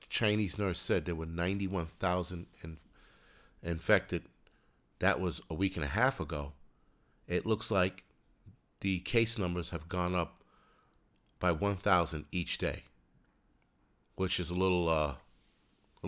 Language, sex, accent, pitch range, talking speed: English, male, American, 85-100 Hz, 140 wpm